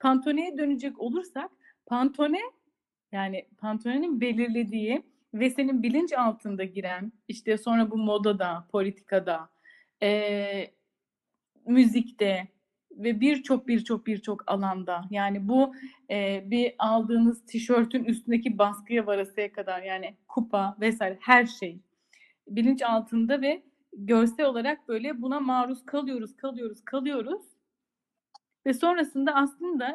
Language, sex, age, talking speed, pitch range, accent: Turkish, female, 30-49, 105 wpm, 215-280 Hz, native